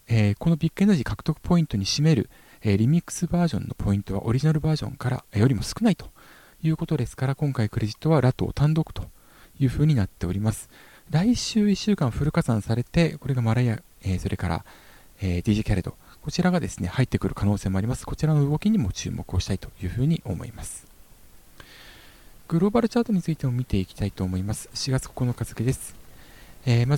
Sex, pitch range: male, 105-145 Hz